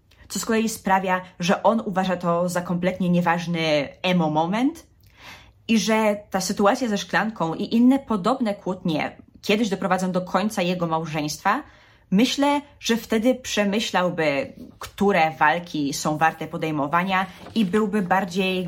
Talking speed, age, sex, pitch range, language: 130 wpm, 20-39, female, 170-210 Hz, Polish